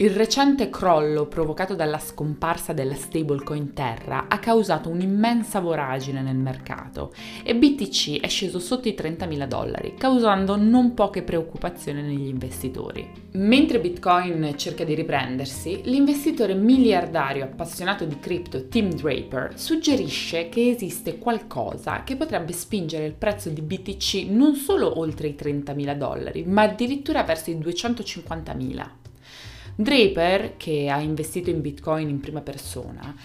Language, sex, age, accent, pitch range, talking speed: Italian, female, 20-39, native, 150-215 Hz, 130 wpm